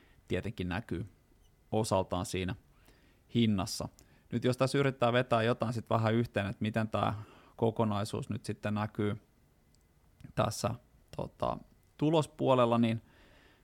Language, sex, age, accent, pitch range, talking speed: Finnish, male, 20-39, native, 105-125 Hz, 105 wpm